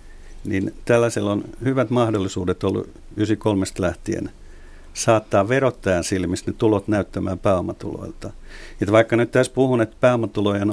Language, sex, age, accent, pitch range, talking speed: Finnish, male, 60-79, native, 95-110 Hz, 115 wpm